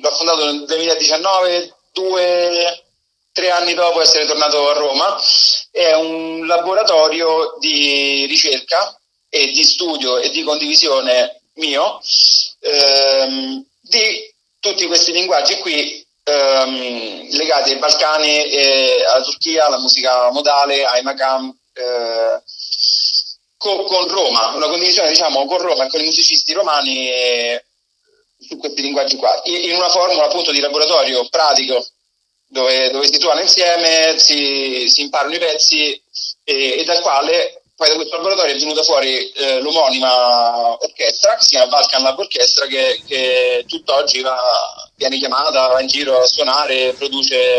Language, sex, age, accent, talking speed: Italian, male, 30-49, native, 135 wpm